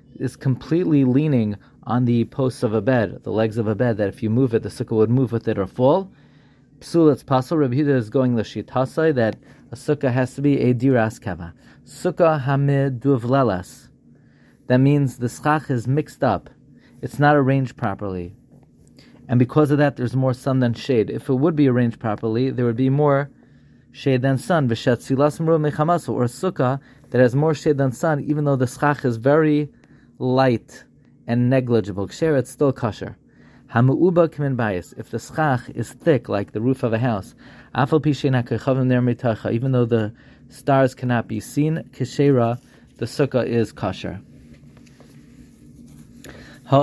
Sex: male